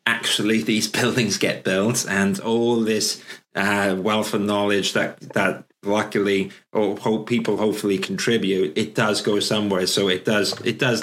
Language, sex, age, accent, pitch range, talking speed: English, male, 30-49, British, 105-135 Hz, 160 wpm